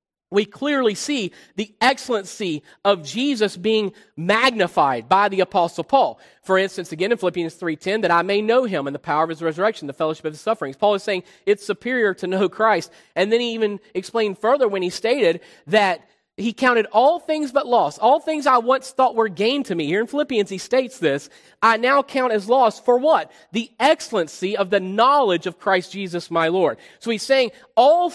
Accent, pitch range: American, 190-260 Hz